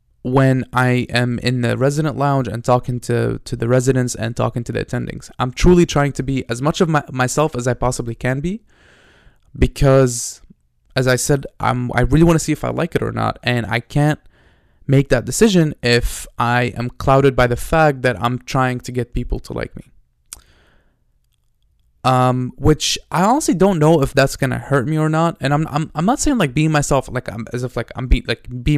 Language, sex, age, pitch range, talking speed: English, male, 20-39, 120-145 Hz, 215 wpm